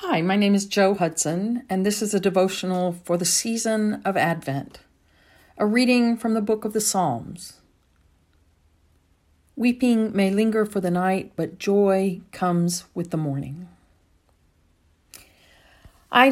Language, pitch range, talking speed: English, 140-185 Hz, 135 wpm